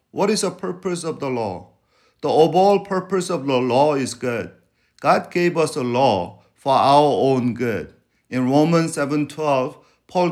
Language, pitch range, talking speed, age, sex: English, 125-165 Hz, 165 wpm, 50-69, male